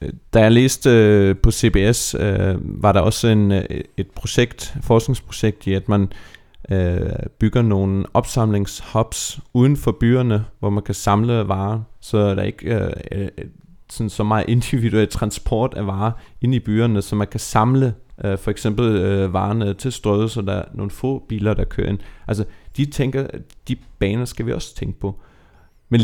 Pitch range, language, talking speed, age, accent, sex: 100-125 Hz, Danish, 160 wpm, 30-49, native, male